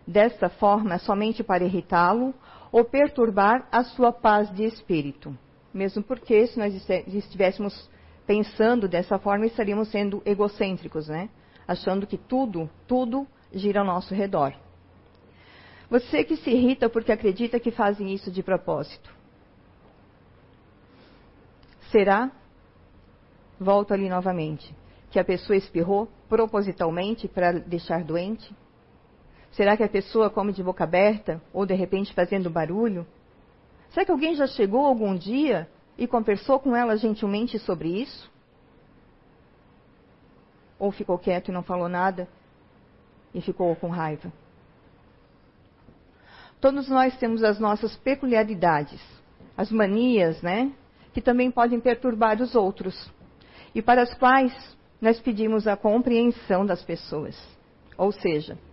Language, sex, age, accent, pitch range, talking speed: Portuguese, female, 50-69, Brazilian, 175-230 Hz, 125 wpm